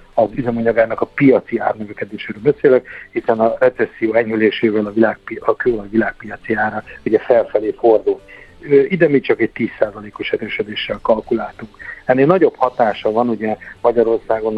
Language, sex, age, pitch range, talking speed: Hungarian, male, 50-69, 105-120 Hz, 135 wpm